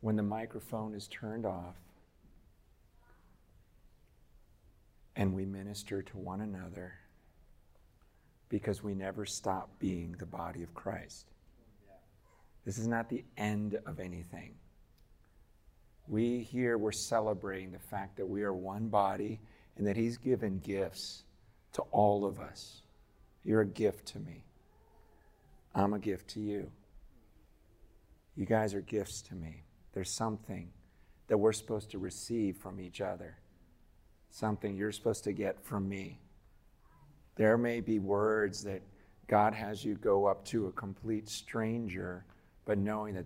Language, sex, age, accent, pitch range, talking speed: English, male, 50-69, American, 95-110 Hz, 135 wpm